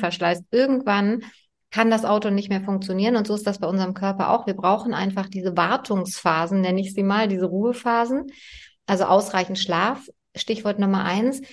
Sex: female